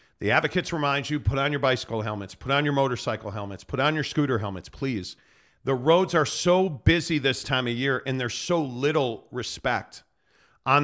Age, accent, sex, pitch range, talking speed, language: 40-59, American, male, 125-165 Hz, 195 wpm, English